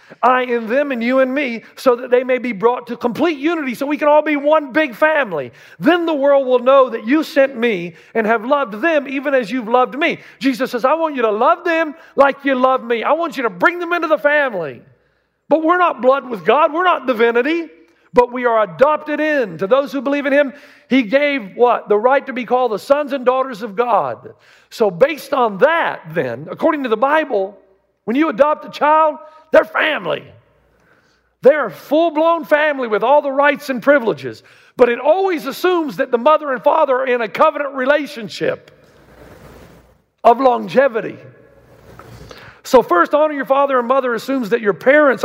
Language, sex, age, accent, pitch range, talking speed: English, male, 50-69, American, 240-300 Hz, 200 wpm